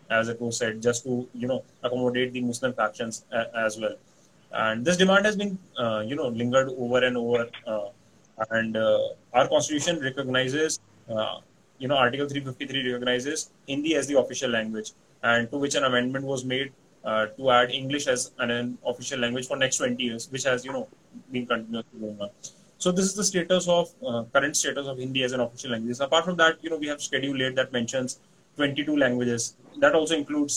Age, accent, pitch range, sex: 20-39, Indian, 120-140 Hz, male